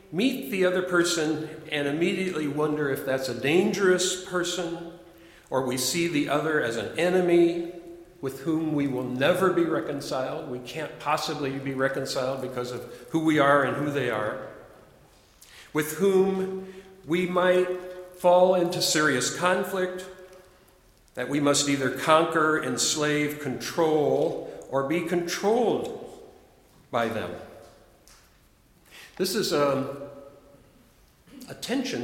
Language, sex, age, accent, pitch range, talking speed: English, male, 50-69, American, 135-180 Hz, 120 wpm